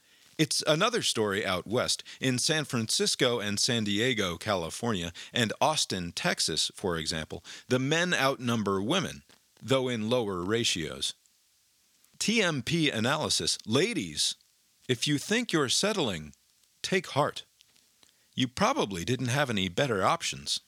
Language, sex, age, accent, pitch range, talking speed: English, male, 40-59, American, 100-145 Hz, 120 wpm